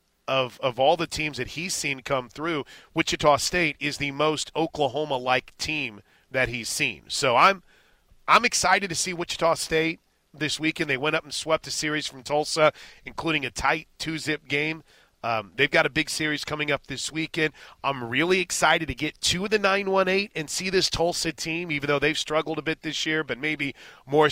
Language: English